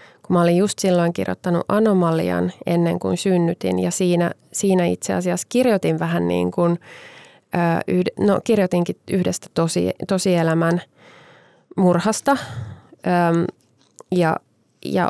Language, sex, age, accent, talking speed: Finnish, female, 20-39, native, 105 wpm